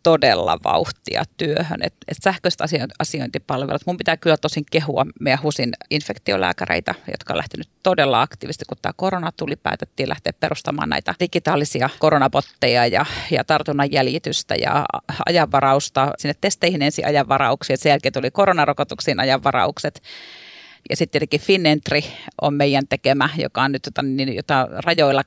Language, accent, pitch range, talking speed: Finnish, native, 135-155 Hz, 140 wpm